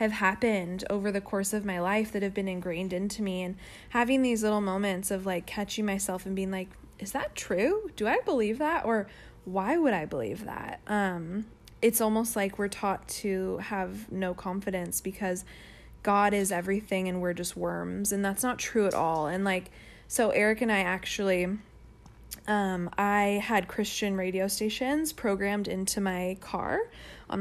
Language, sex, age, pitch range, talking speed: English, female, 20-39, 190-230 Hz, 175 wpm